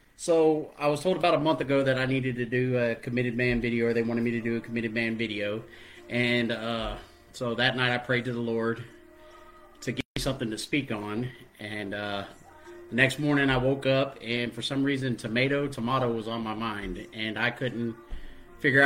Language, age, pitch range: English, 30-49, 115-140 Hz